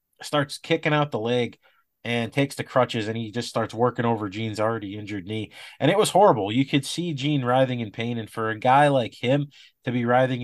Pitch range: 115-145 Hz